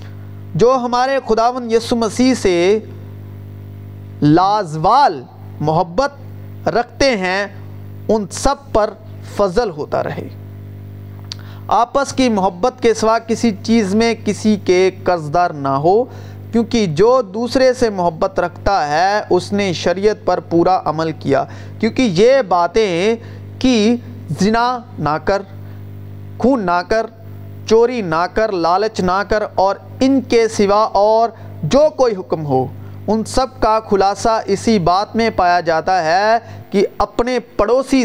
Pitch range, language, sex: 155-235 Hz, Urdu, male